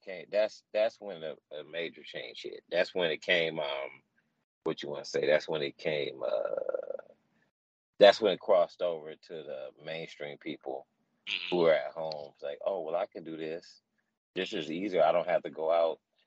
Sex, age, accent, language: male, 30-49, American, English